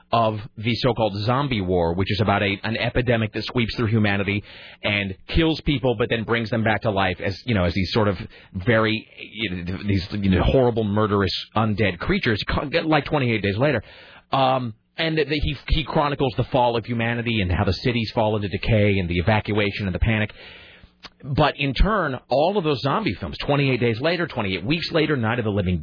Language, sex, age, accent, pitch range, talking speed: English, male, 30-49, American, 100-135 Hz, 210 wpm